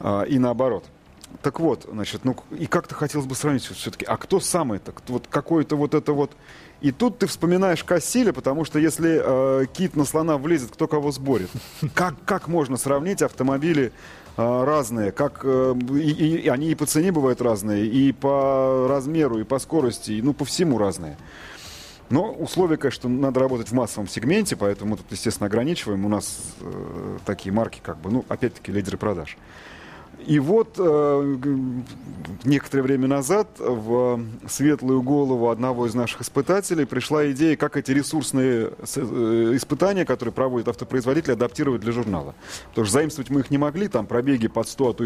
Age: 30-49